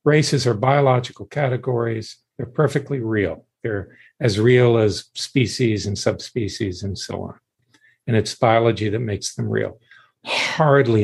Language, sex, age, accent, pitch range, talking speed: English, male, 50-69, American, 110-140 Hz, 135 wpm